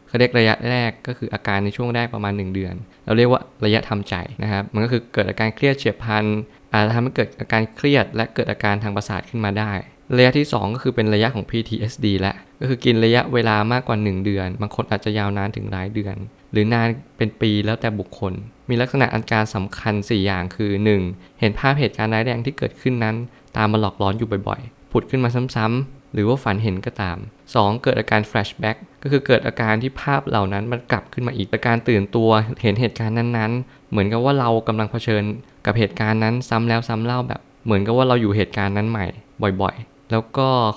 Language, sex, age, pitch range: Thai, male, 20-39, 100-125 Hz